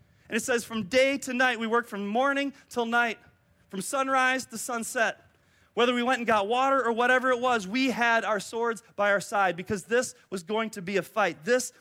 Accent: American